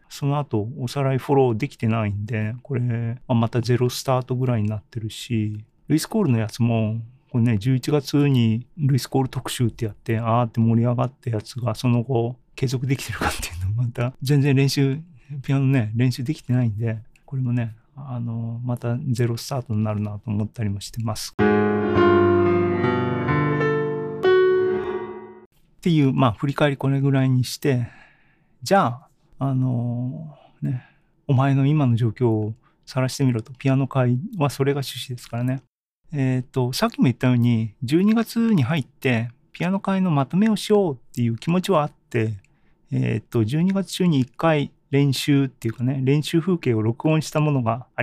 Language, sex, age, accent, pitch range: Japanese, male, 40-59, native, 115-145 Hz